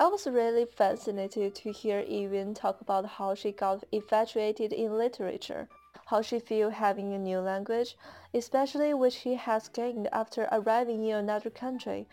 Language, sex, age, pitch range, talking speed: English, female, 20-39, 205-245 Hz, 160 wpm